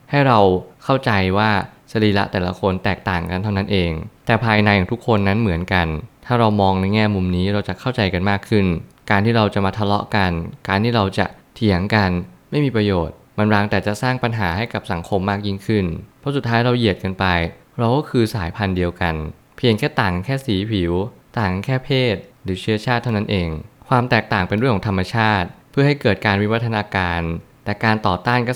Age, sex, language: 20-39, male, Thai